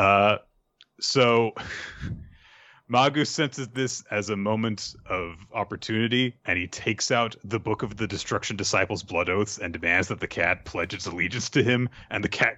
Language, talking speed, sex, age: English, 160 wpm, male, 30-49